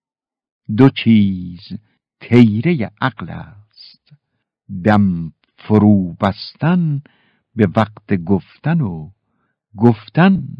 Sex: male